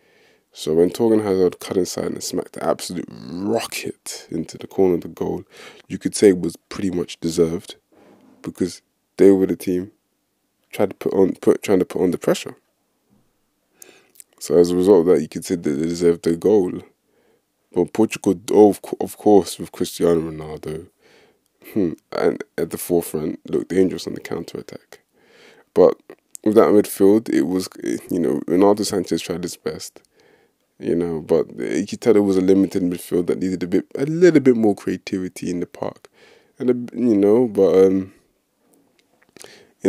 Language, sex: English, male